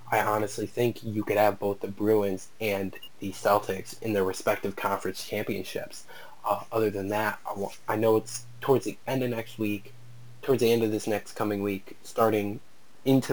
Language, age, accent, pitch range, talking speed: English, 20-39, American, 105-120 Hz, 190 wpm